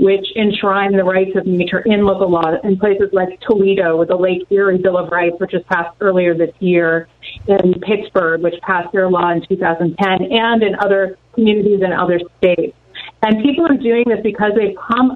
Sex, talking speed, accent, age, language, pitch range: female, 195 wpm, American, 30-49, English, 185-215 Hz